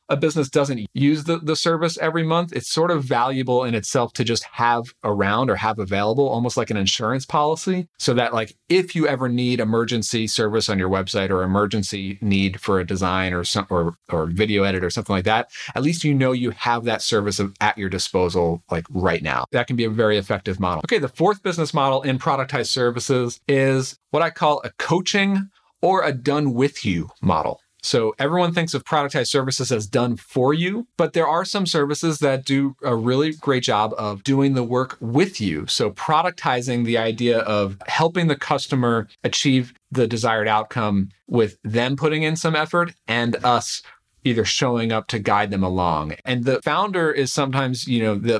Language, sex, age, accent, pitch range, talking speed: English, male, 40-59, American, 105-140 Hz, 195 wpm